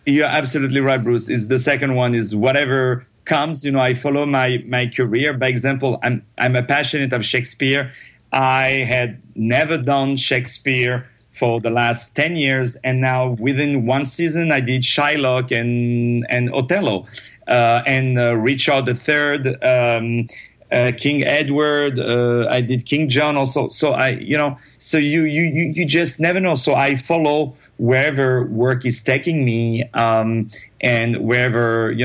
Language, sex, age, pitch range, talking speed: English, male, 40-59, 115-140 Hz, 160 wpm